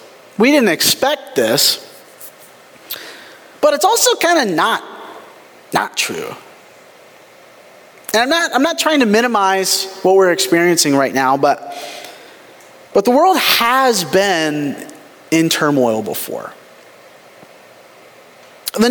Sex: male